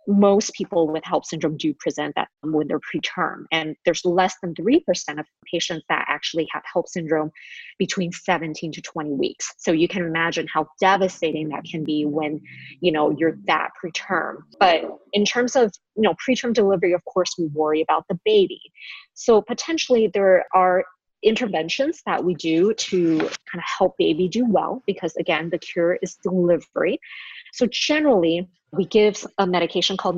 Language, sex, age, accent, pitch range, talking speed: English, female, 20-39, American, 165-200 Hz, 170 wpm